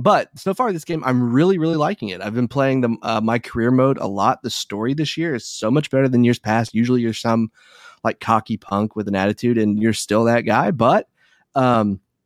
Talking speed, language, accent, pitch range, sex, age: 230 wpm, English, American, 105-135 Hz, male, 30-49